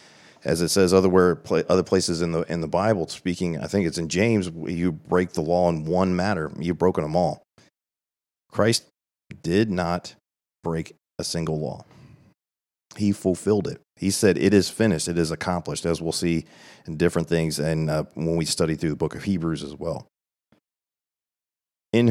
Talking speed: 175 wpm